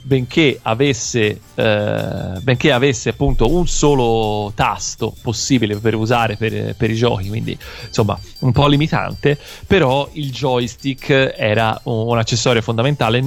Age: 30-49